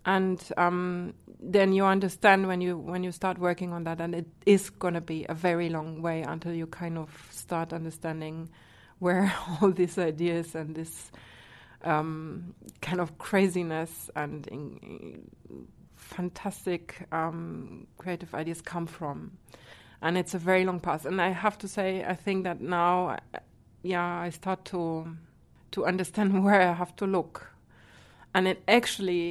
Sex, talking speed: female, 160 wpm